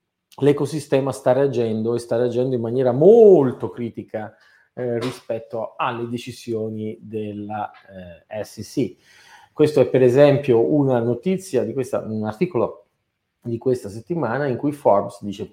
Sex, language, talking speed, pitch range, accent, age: male, Italian, 130 wpm, 115-145 Hz, native, 40-59